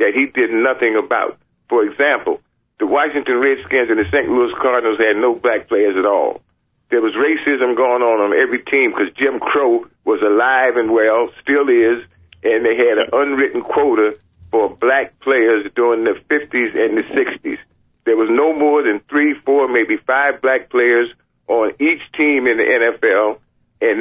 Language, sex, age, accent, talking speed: English, male, 50-69, American, 175 wpm